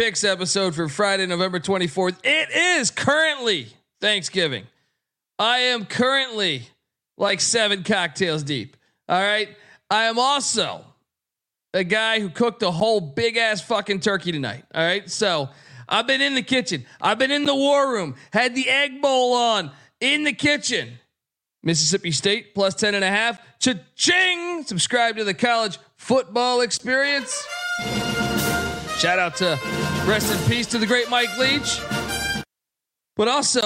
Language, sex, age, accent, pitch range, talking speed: English, male, 40-59, American, 180-245 Hz, 145 wpm